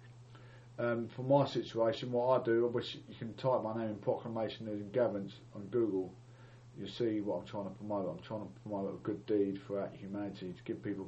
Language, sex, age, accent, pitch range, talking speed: English, male, 40-59, British, 105-125 Hz, 210 wpm